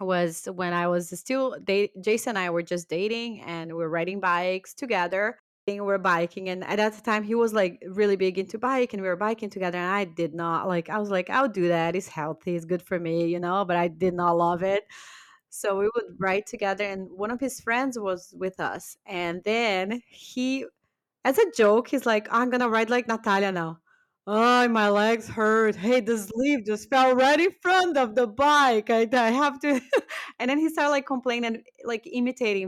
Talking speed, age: 220 wpm, 30-49